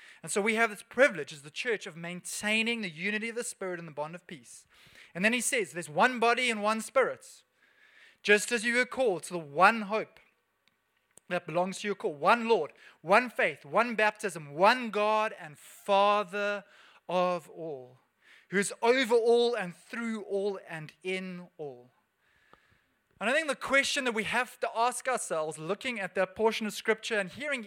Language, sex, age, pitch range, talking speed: English, male, 20-39, 180-240 Hz, 185 wpm